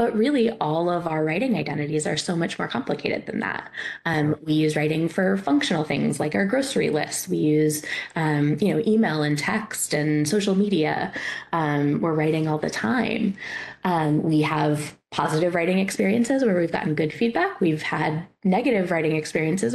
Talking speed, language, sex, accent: 175 wpm, English, female, American